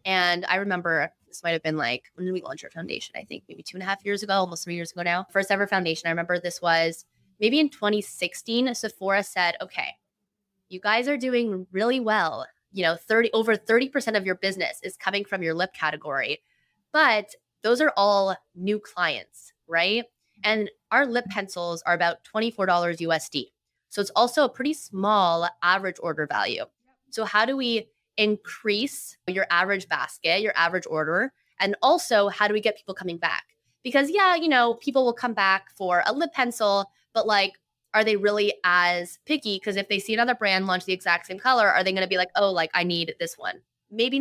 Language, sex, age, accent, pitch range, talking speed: English, female, 20-39, American, 175-220 Hz, 200 wpm